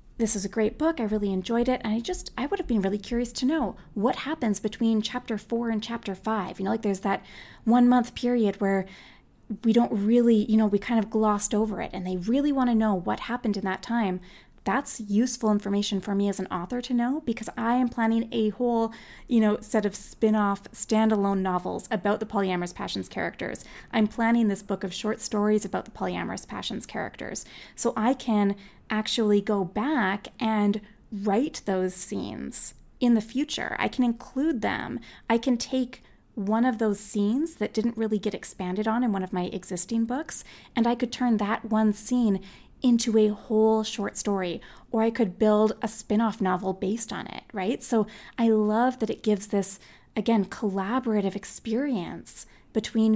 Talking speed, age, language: 190 wpm, 20-39, English